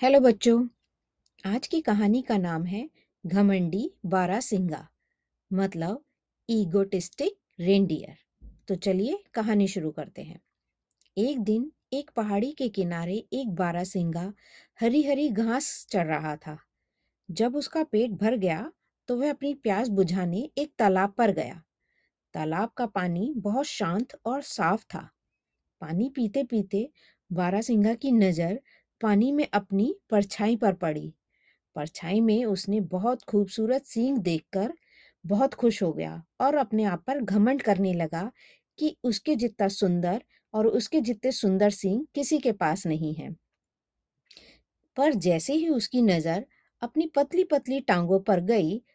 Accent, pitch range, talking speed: native, 190-255 Hz, 130 wpm